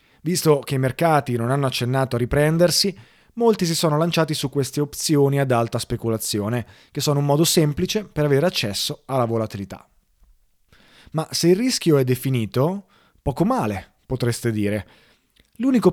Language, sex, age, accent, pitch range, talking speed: Italian, male, 30-49, native, 120-160 Hz, 150 wpm